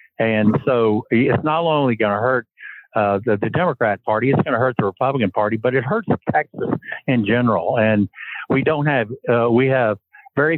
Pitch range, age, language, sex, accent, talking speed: 110-130 Hz, 60-79, English, male, American, 185 wpm